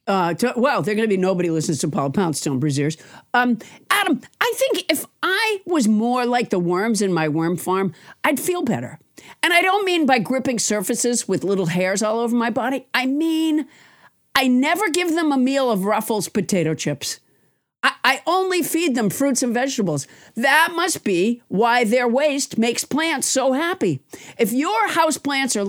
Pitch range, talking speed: 190-290 Hz, 180 wpm